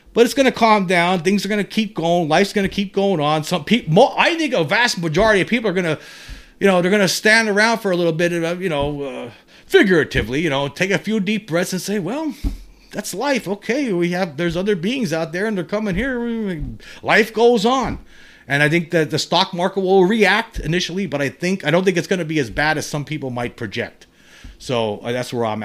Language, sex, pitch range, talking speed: English, male, 145-195 Hz, 245 wpm